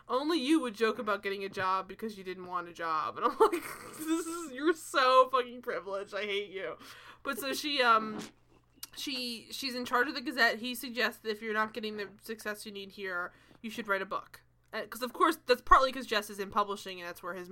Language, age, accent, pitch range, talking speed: English, 20-39, American, 200-250 Hz, 235 wpm